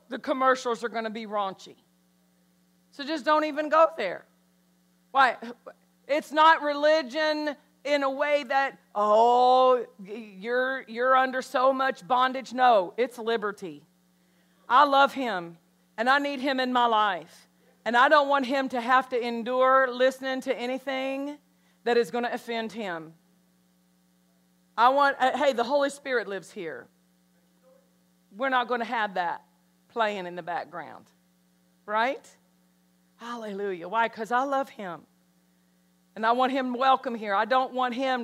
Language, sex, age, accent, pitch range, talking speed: English, female, 40-59, American, 185-270 Hz, 150 wpm